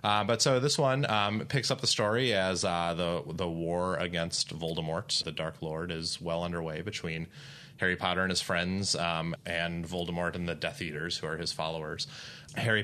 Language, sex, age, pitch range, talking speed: English, male, 30-49, 85-105 Hz, 190 wpm